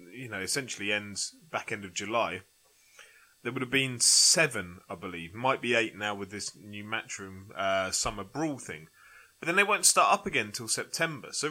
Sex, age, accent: male, 20-39, British